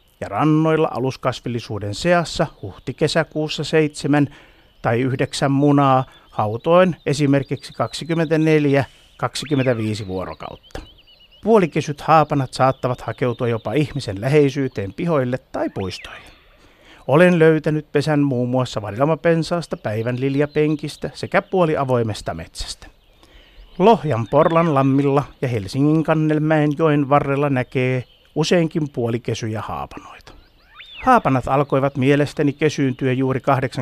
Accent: native